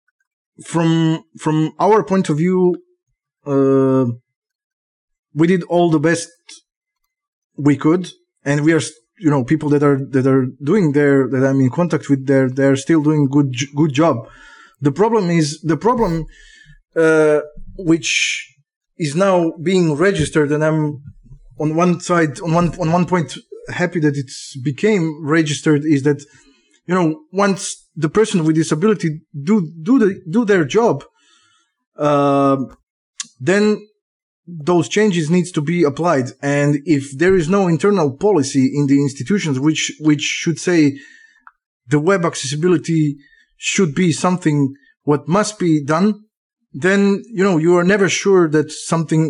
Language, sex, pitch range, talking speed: English, male, 145-180 Hz, 145 wpm